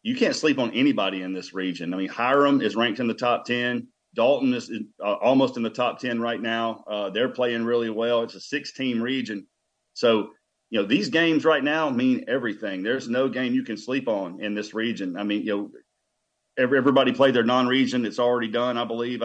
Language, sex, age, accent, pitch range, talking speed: English, male, 40-59, American, 110-130 Hz, 210 wpm